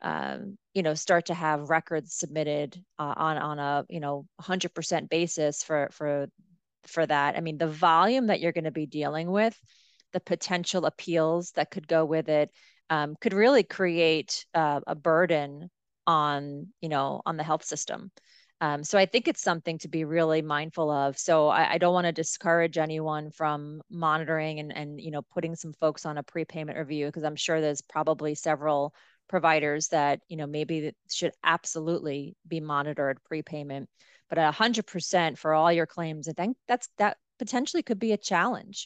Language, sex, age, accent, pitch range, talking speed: English, female, 30-49, American, 150-175 Hz, 180 wpm